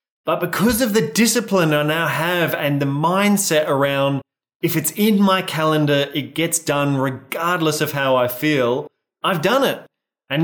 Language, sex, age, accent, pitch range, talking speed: English, male, 20-39, Australian, 145-190 Hz, 165 wpm